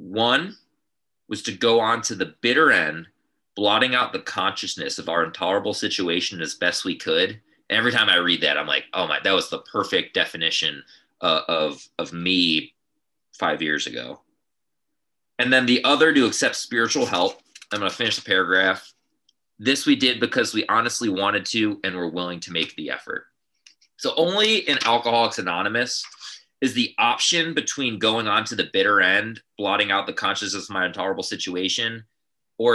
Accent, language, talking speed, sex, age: American, English, 170 wpm, male, 30-49